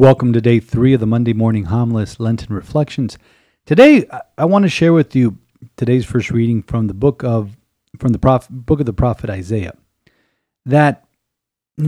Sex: male